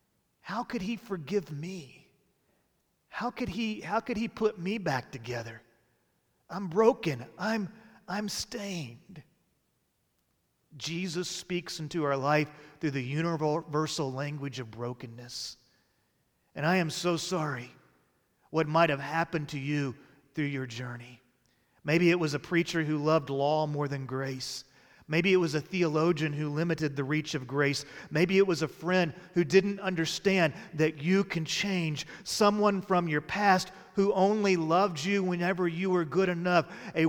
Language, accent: English, American